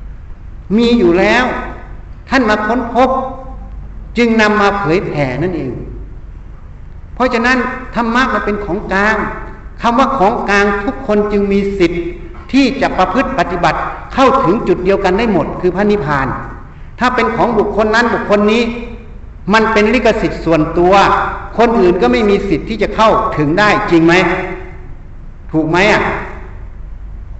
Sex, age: male, 60-79